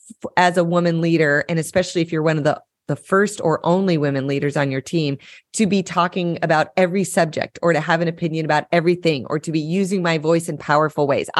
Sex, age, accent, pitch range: female, 30-49, American, 150-195 Hz